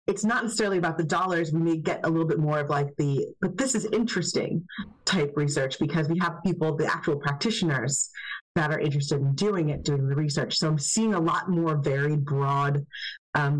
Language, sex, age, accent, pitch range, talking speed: English, female, 30-49, American, 150-185 Hz, 205 wpm